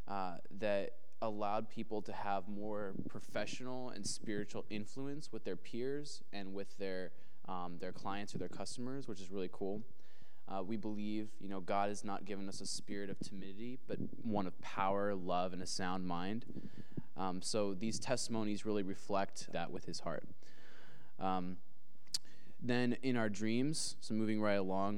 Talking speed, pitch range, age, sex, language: 165 wpm, 100-115 Hz, 20-39, male, English